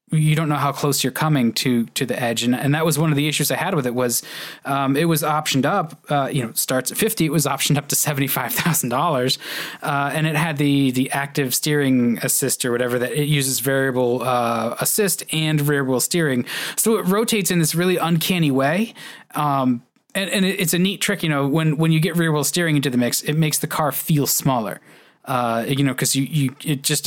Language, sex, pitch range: English, male, 130-155 Hz